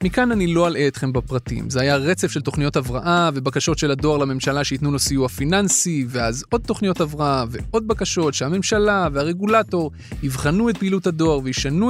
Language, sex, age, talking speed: Hebrew, male, 30-49, 165 wpm